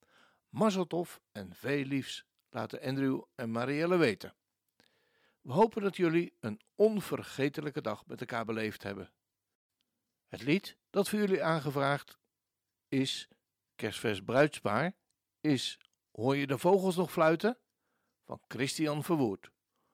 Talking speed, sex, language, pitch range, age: 115 wpm, male, Dutch, 125-185 Hz, 60-79